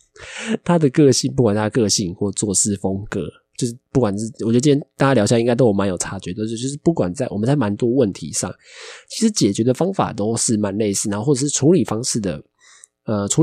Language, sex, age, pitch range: Chinese, male, 20-39, 100-145 Hz